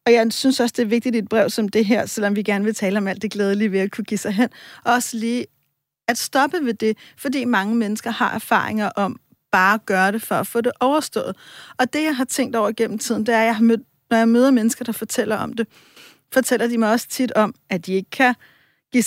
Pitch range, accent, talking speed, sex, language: 210-245 Hz, native, 250 wpm, female, Danish